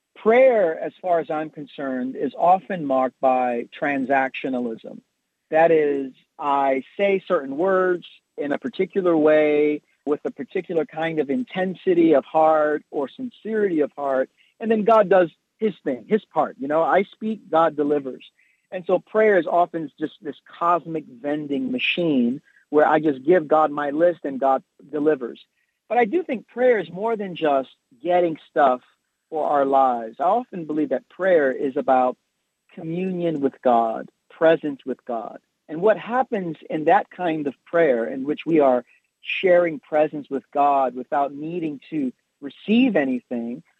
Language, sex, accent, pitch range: English, male, American, 140-185 Hz